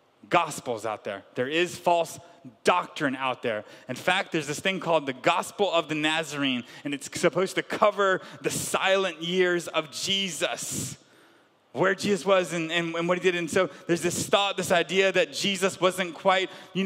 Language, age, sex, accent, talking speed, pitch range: English, 30-49, male, American, 180 wpm, 170-215 Hz